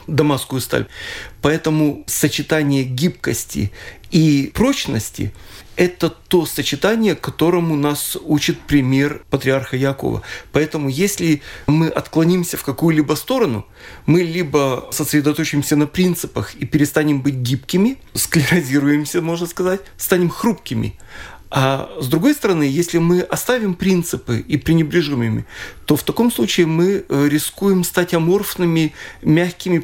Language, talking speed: Russian, 110 wpm